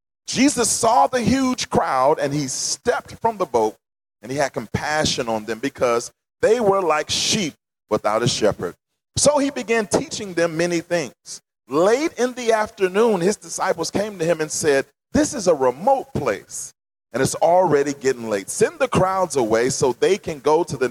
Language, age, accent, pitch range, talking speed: English, 40-59, American, 130-220 Hz, 180 wpm